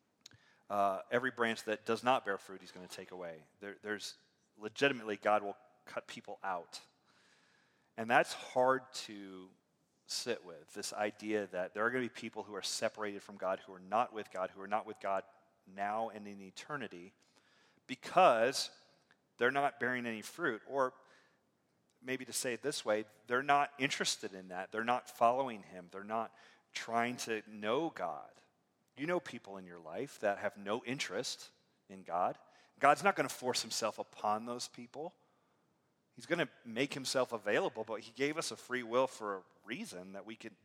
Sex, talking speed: male, 180 wpm